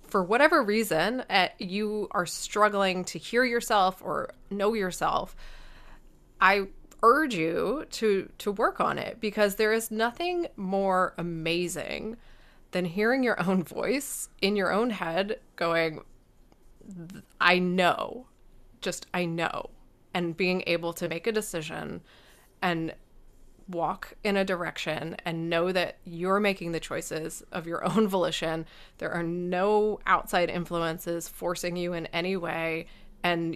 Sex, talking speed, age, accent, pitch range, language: female, 135 wpm, 20-39, American, 170-210 Hz, English